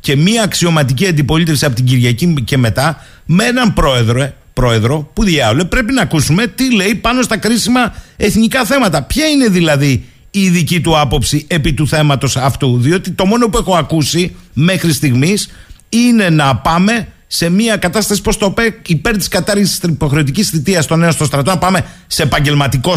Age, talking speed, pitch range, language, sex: 50-69, 175 wpm, 155-215 Hz, Greek, male